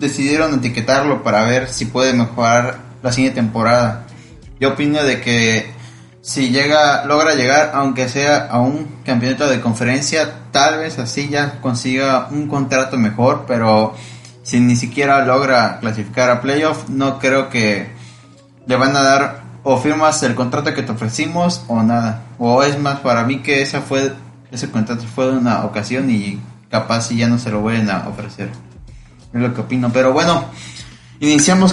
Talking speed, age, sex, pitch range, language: 165 wpm, 20-39, male, 120-140 Hz, Spanish